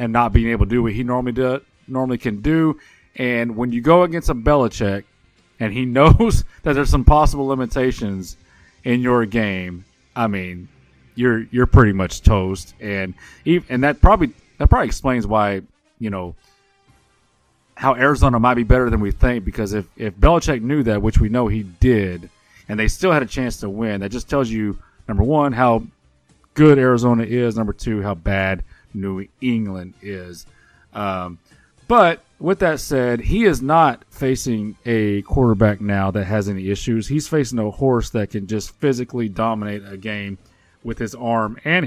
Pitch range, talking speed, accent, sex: 100-130 Hz, 180 wpm, American, male